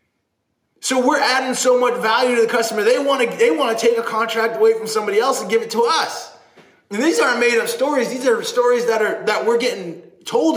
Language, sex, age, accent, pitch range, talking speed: English, male, 20-39, American, 195-260 Hz, 215 wpm